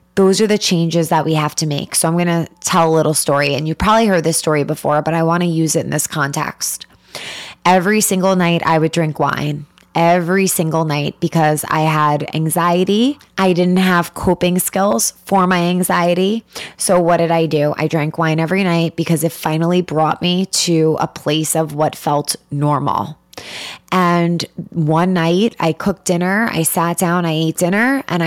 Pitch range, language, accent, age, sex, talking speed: 155-195 Hz, English, American, 20-39, female, 190 wpm